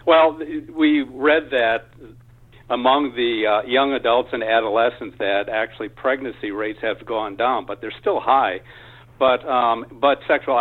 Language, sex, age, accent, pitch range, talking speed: English, male, 60-79, American, 115-140 Hz, 145 wpm